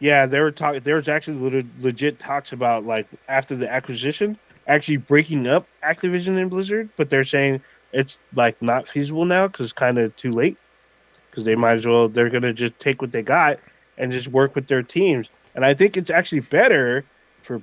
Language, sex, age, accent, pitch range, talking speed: English, male, 20-39, American, 115-140 Hz, 195 wpm